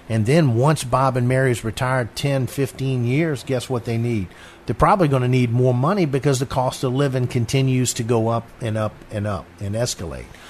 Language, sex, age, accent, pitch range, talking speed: English, male, 50-69, American, 105-130 Hz, 205 wpm